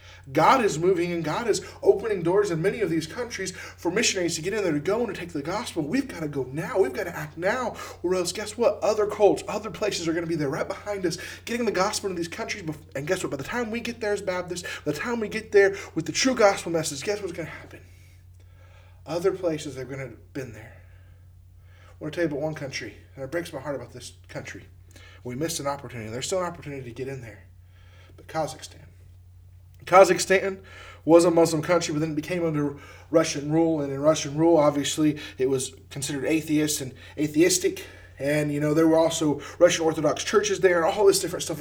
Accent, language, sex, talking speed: American, English, male, 230 wpm